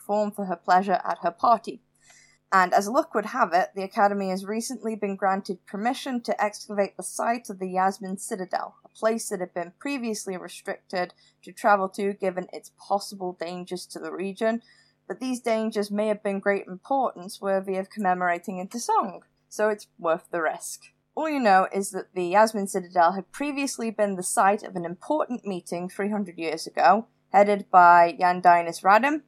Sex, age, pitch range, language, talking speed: female, 20-39, 180-220 Hz, English, 175 wpm